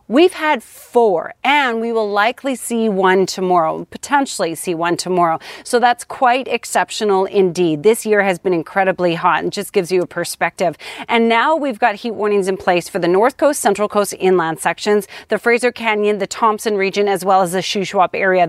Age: 30-49